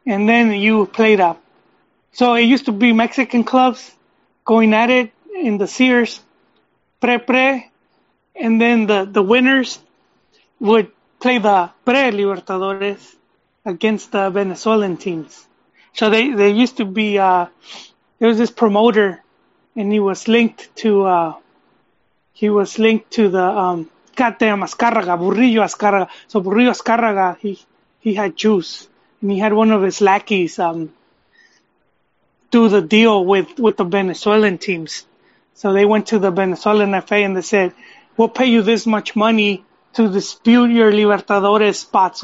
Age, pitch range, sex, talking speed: 30-49, 195-235 Hz, male, 150 wpm